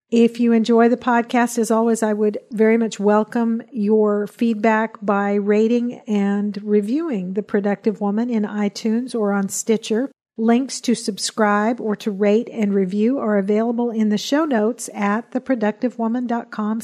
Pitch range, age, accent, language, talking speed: 205-235 Hz, 50-69, American, English, 150 wpm